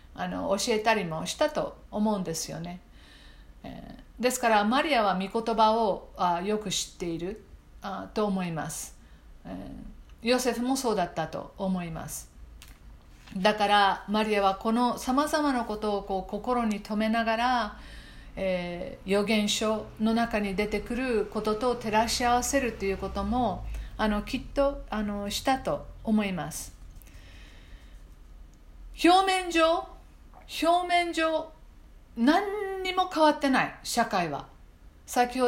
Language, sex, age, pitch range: Japanese, female, 50-69, 185-245 Hz